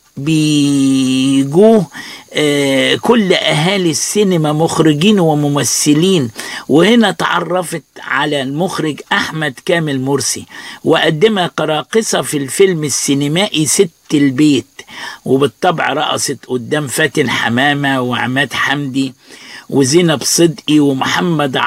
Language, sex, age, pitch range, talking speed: Arabic, male, 50-69, 145-180 Hz, 85 wpm